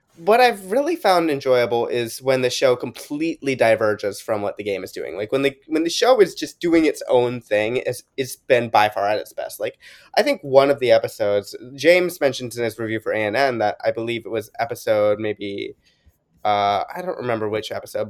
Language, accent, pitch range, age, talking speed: English, American, 110-135 Hz, 20-39, 215 wpm